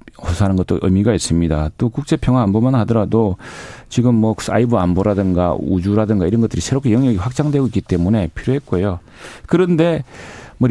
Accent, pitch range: native, 95-125 Hz